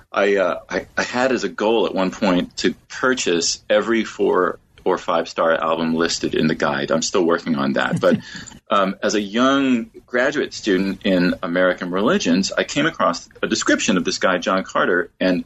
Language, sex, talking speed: English, male, 190 wpm